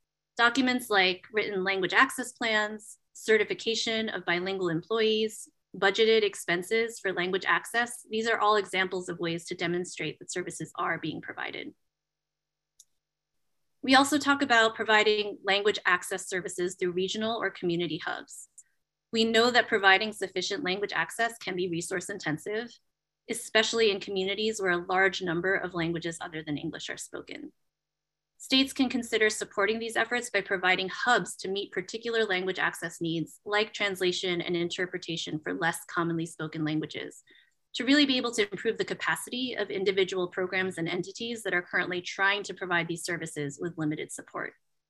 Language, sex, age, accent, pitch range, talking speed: English, female, 20-39, American, 180-225 Hz, 150 wpm